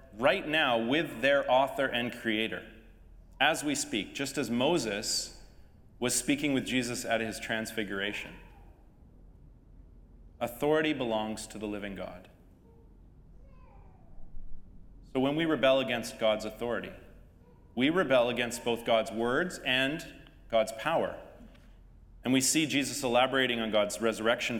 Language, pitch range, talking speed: English, 105-130 Hz, 120 wpm